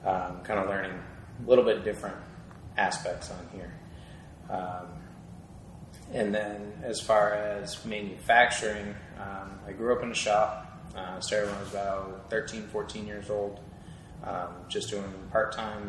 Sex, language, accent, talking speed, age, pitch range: male, English, American, 145 wpm, 20-39, 90-105 Hz